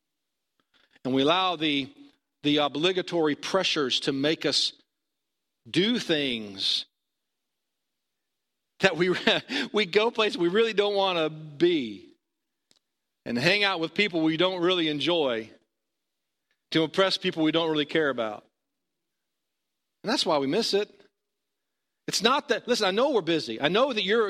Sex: male